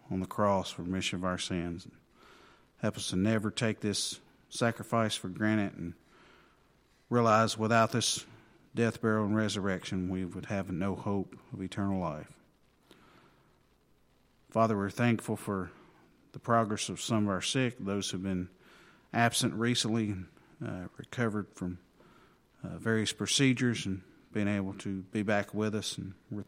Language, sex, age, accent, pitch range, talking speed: English, male, 50-69, American, 95-115 Hz, 150 wpm